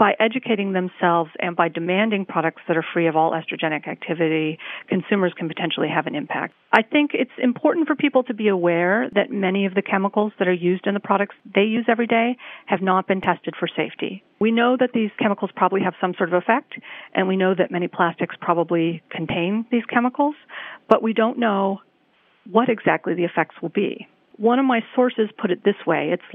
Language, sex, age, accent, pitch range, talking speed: English, female, 40-59, American, 175-210 Hz, 205 wpm